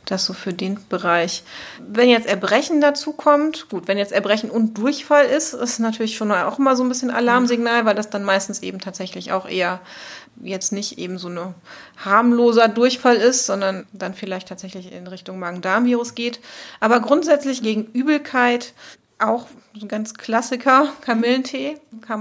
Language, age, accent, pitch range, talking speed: German, 30-49, German, 205-250 Hz, 160 wpm